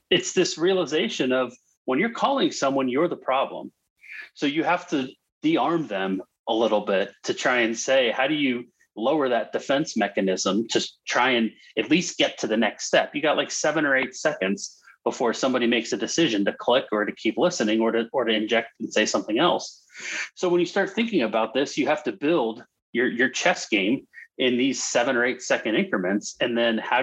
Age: 30-49